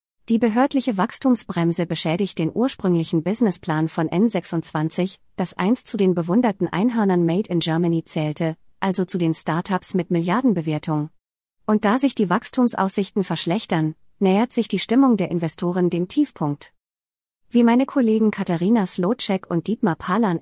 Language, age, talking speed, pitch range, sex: German, 30-49, 140 wpm, 165-215 Hz, female